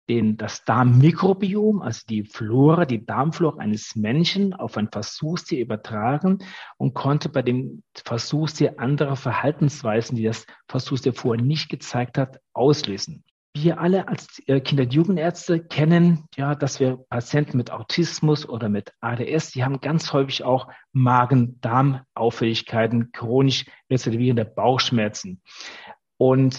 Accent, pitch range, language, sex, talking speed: German, 120-155 Hz, German, male, 125 wpm